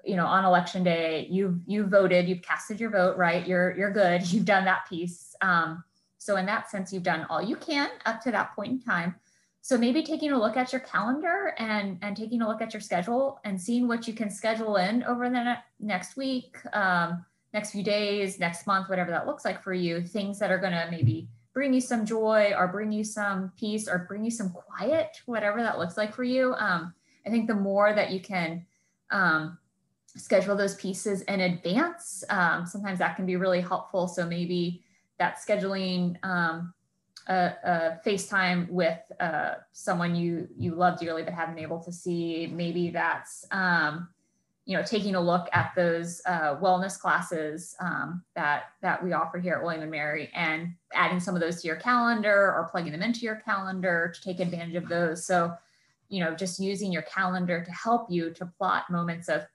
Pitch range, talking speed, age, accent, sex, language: 175-215 Hz, 200 wpm, 20-39, American, female, English